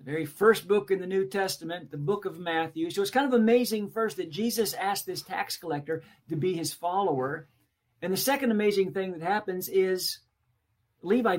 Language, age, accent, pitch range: English, 50-69, American, 165-230 Hz